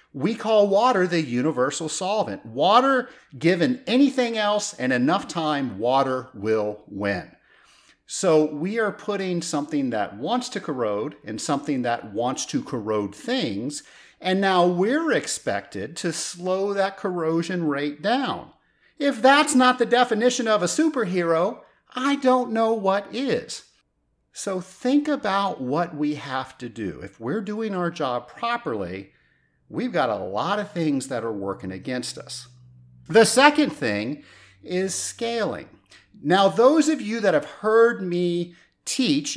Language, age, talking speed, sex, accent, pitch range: English, 50-69, 145 wpm, male, American, 150-245 Hz